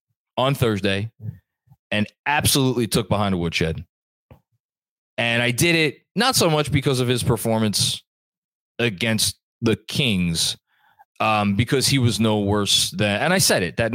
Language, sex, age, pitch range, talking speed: English, male, 20-39, 95-125 Hz, 145 wpm